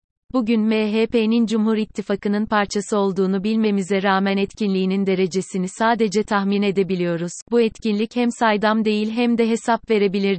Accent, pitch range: native, 195-220 Hz